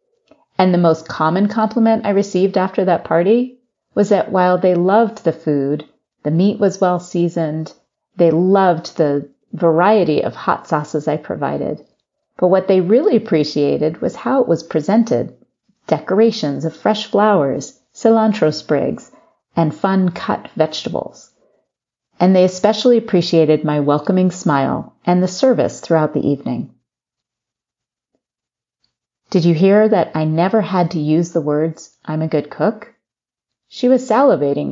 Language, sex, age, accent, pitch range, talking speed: English, female, 40-59, American, 160-210 Hz, 140 wpm